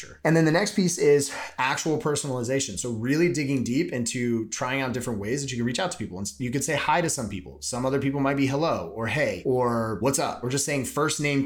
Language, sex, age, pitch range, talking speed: English, male, 30-49, 110-145 Hz, 250 wpm